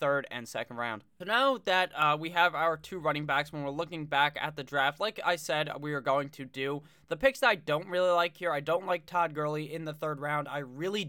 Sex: male